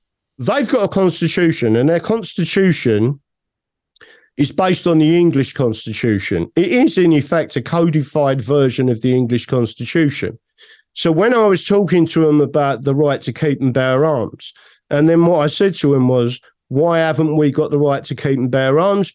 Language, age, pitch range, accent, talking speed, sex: English, 50-69, 150-220 Hz, British, 180 wpm, male